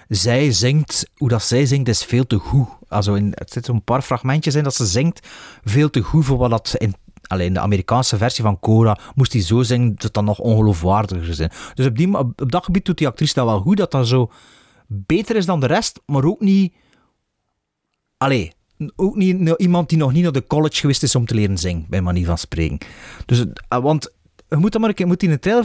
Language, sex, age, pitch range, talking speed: Dutch, male, 30-49, 110-165 Hz, 225 wpm